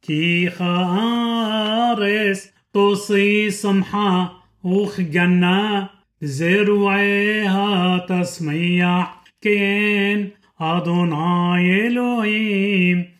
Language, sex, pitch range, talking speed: Hebrew, male, 180-205 Hz, 50 wpm